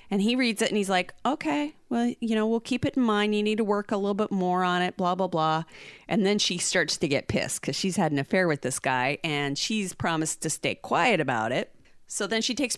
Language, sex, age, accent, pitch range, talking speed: English, female, 30-49, American, 160-215 Hz, 265 wpm